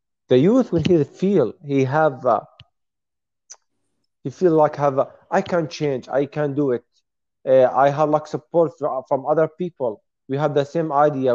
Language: English